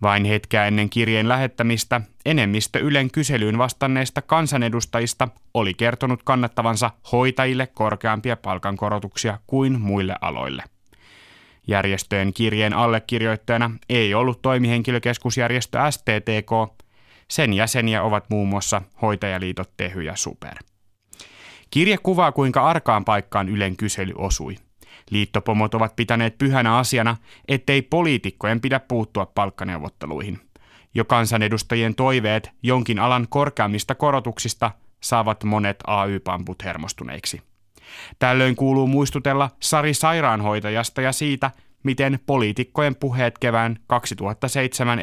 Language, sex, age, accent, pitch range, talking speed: Finnish, male, 30-49, native, 105-130 Hz, 100 wpm